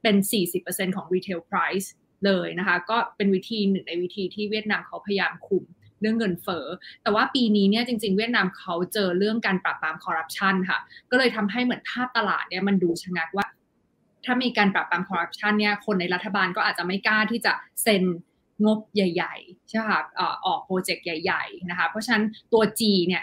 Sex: female